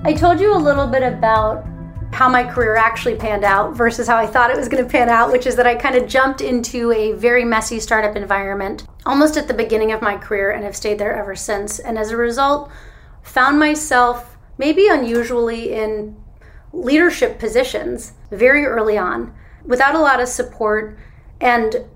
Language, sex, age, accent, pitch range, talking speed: English, female, 30-49, American, 215-260 Hz, 190 wpm